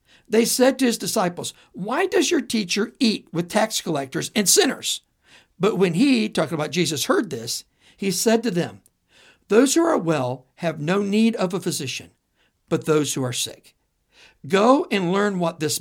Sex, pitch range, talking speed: male, 155-220 Hz, 180 wpm